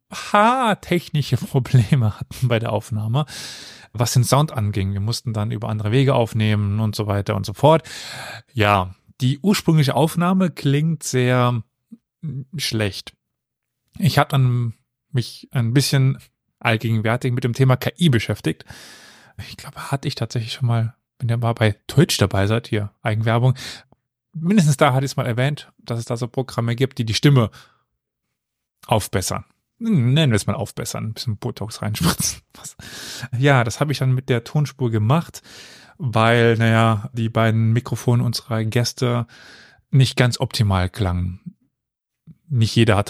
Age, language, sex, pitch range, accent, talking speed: 30-49, German, male, 110-140 Hz, German, 150 wpm